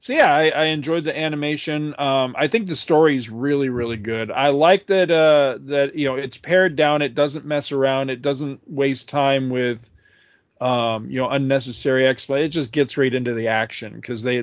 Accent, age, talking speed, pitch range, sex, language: American, 40-59, 205 wpm, 115-140 Hz, male, English